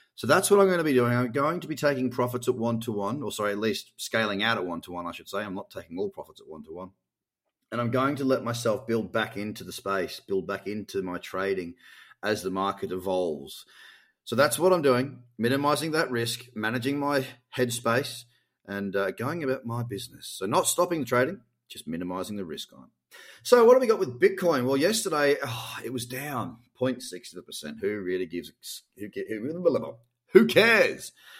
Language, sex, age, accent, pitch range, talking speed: English, male, 30-49, Australian, 100-130 Hz, 195 wpm